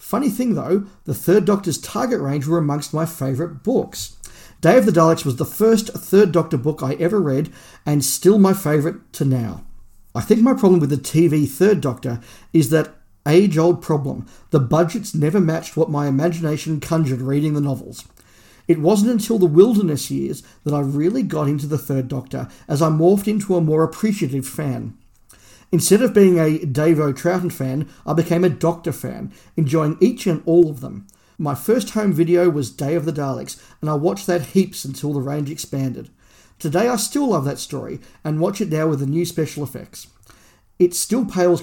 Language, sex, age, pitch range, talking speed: English, male, 50-69, 140-180 Hz, 190 wpm